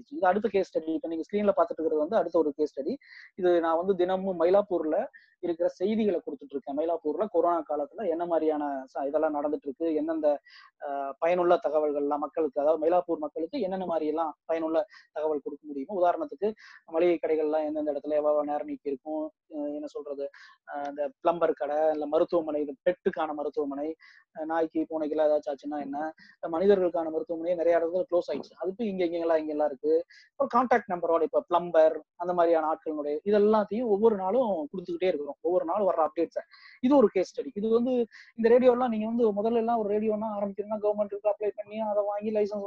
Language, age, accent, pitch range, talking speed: Tamil, 20-39, native, 160-215 Hz, 95 wpm